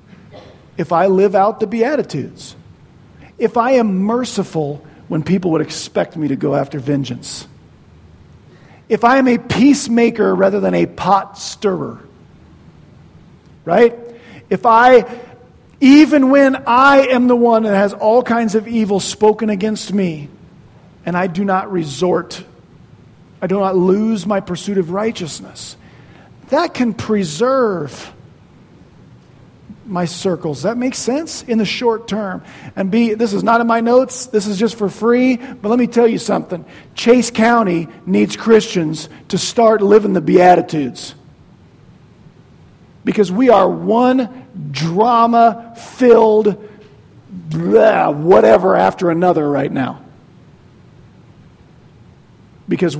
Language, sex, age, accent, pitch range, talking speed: English, male, 40-59, American, 175-230 Hz, 125 wpm